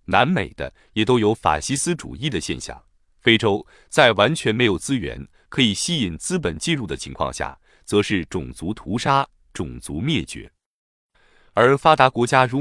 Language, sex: Chinese, male